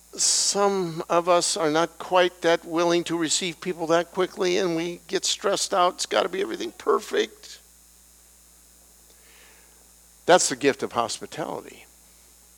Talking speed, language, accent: 140 wpm, English, American